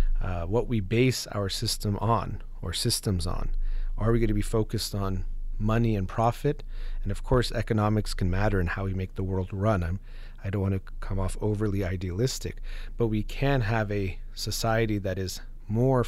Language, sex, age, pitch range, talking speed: English, male, 30-49, 95-120 Hz, 185 wpm